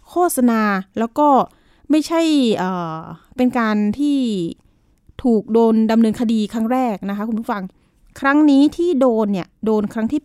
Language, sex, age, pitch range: Thai, female, 20-39, 200-250 Hz